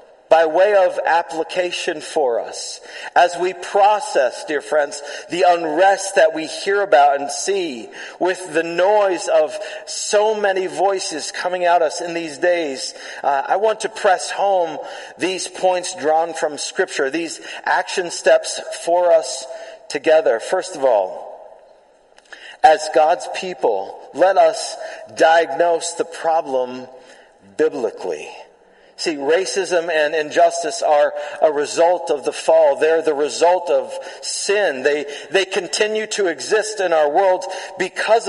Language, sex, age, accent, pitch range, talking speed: English, male, 40-59, American, 165-220 Hz, 135 wpm